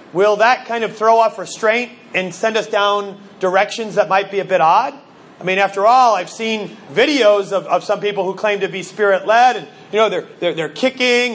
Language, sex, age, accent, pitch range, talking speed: English, male, 30-49, American, 185-230 Hz, 220 wpm